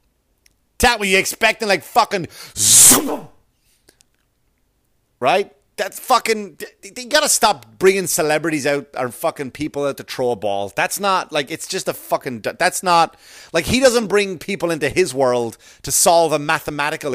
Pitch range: 145-205 Hz